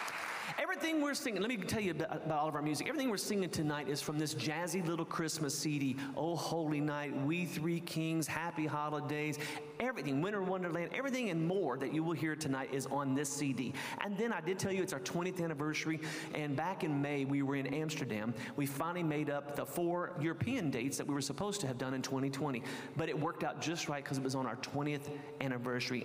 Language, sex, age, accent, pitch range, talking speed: English, male, 40-59, American, 140-175 Hz, 220 wpm